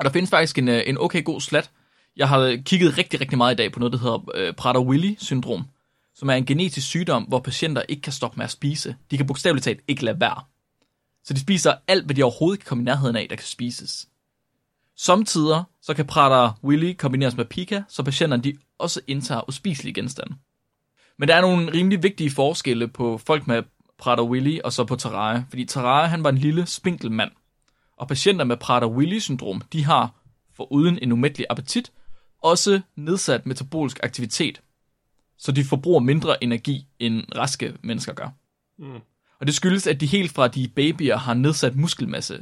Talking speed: 180 wpm